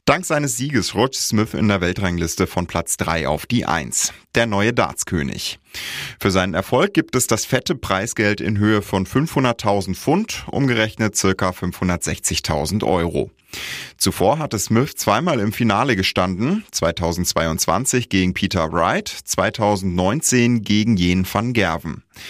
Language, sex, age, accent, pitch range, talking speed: German, male, 30-49, German, 90-115 Hz, 135 wpm